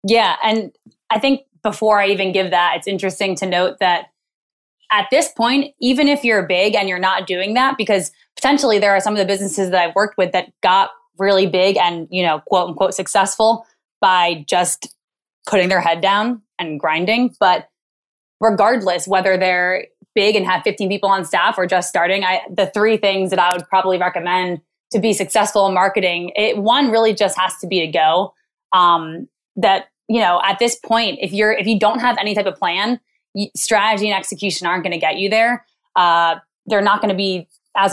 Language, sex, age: English, female, 20-39